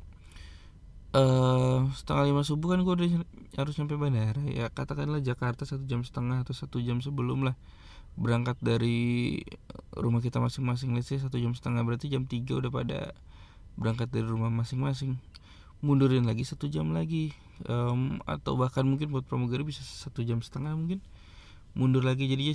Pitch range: 95-135 Hz